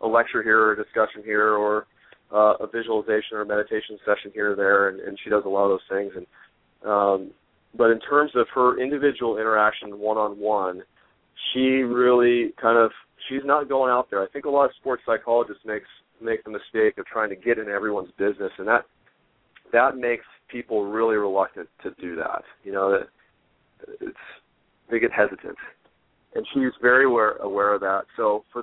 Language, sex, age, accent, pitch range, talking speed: English, male, 30-49, American, 105-125 Hz, 185 wpm